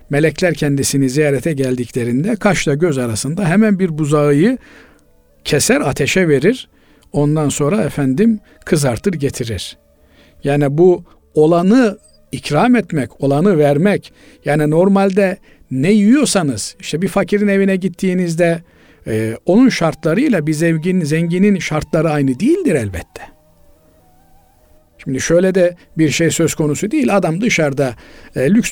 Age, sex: 50-69, male